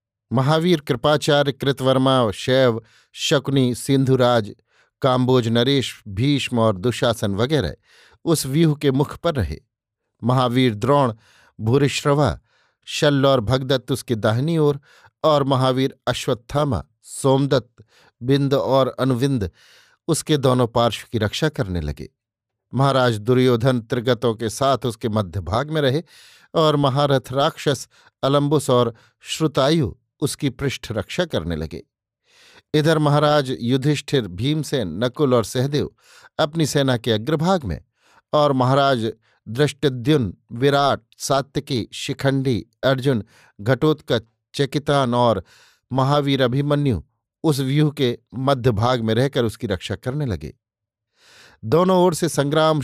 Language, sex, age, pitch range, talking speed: Hindi, male, 50-69, 120-145 Hz, 115 wpm